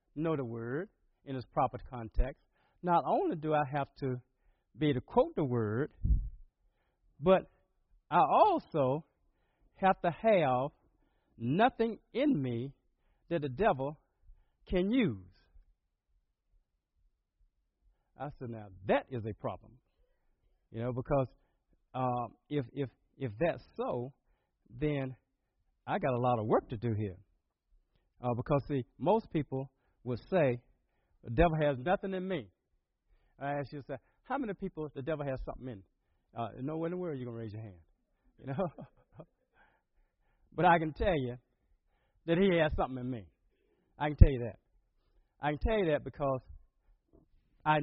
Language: English